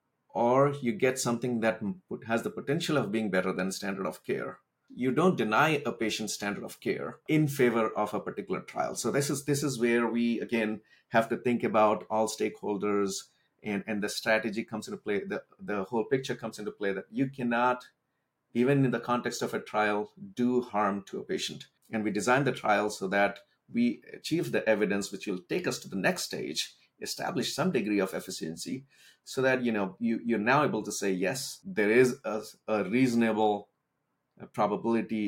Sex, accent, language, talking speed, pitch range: male, Indian, English, 190 wpm, 105-135 Hz